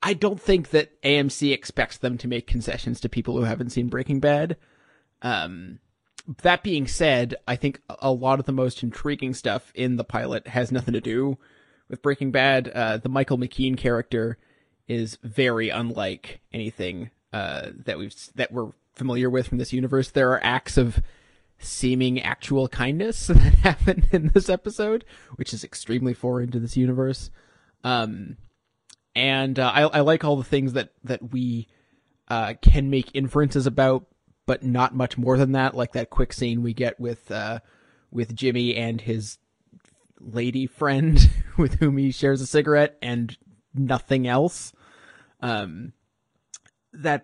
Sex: male